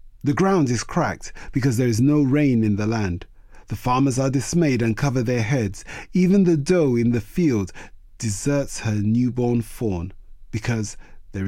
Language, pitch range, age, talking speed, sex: English, 105-145 Hz, 30-49, 165 wpm, male